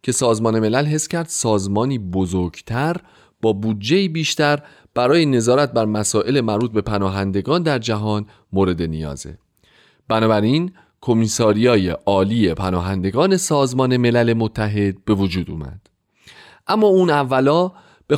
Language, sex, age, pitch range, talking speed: Persian, male, 30-49, 100-145 Hz, 115 wpm